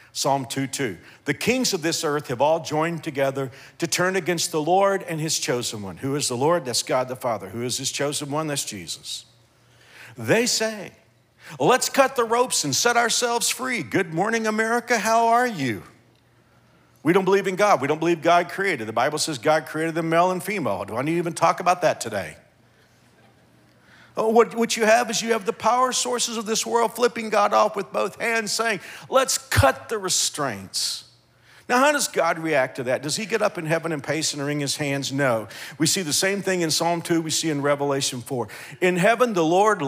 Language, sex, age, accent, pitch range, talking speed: English, male, 50-69, American, 145-215 Hz, 210 wpm